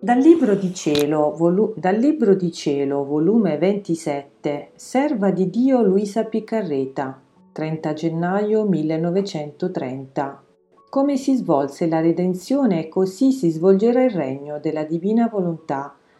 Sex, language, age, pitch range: female, Italian, 40-59, 155-220 Hz